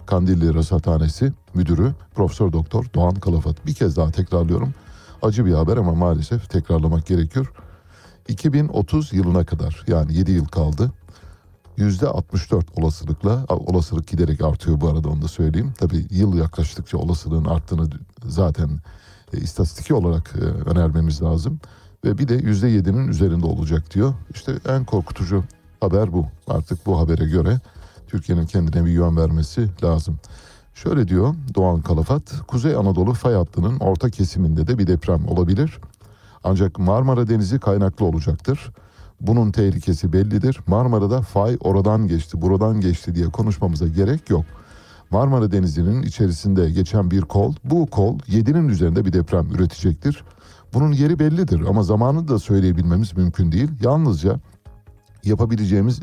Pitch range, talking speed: 85-110 Hz, 130 wpm